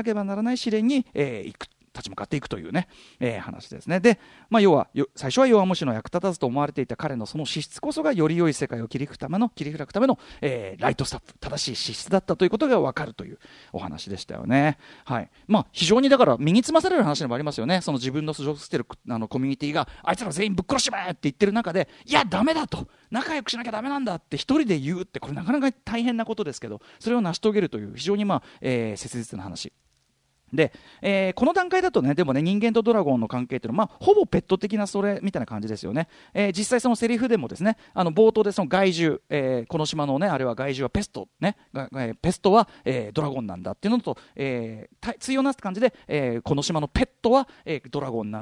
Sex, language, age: male, Japanese, 40-59